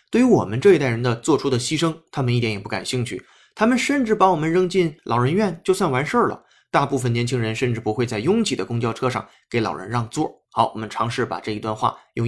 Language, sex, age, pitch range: Chinese, male, 20-39, 120-170 Hz